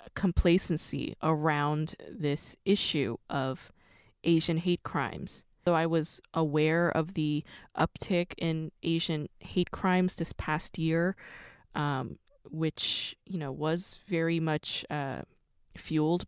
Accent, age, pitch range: American, 20-39, 150-180 Hz